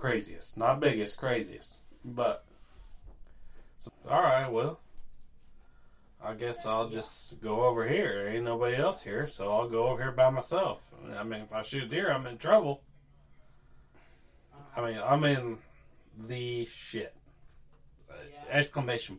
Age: 20-39